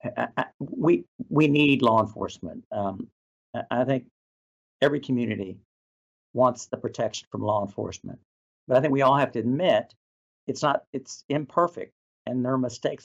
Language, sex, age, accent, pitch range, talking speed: English, male, 50-69, American, 115-150 Hz, 155 wpm